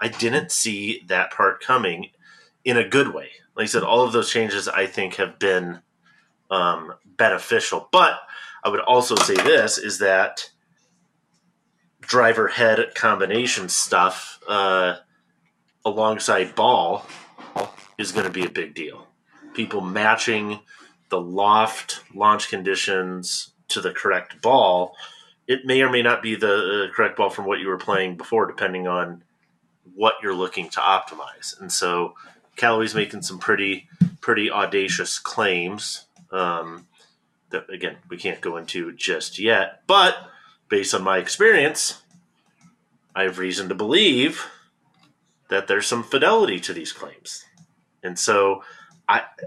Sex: male